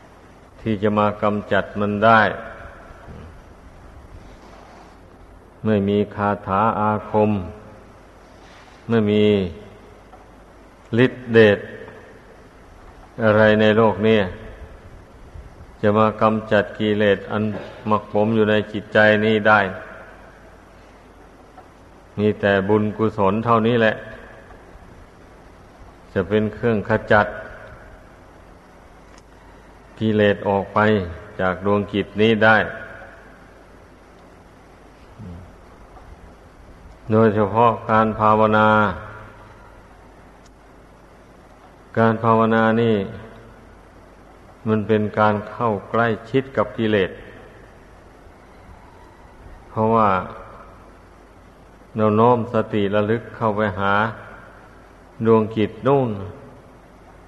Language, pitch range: Thai, 90-110 Hz